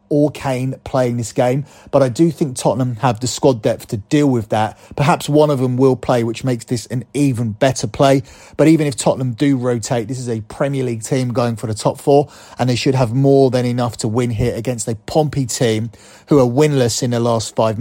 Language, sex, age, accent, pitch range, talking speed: English, male, 30-49, British, 120-140 Hz, 235 wpm